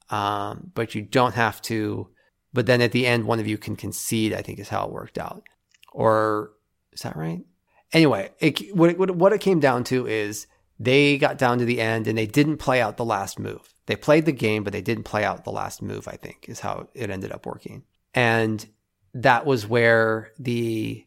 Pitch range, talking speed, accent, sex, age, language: 105-125 Hz, 215 wpm, American, male, 30-49, English